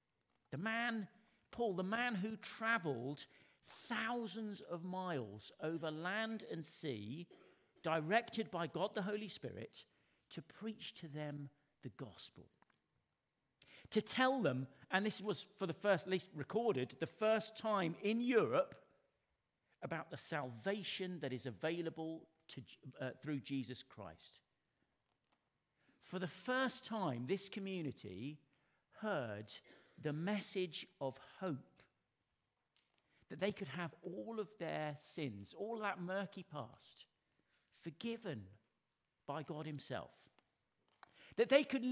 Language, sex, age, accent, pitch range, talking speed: English, male, 50-69, British, 140-210 Hz, 120 wpm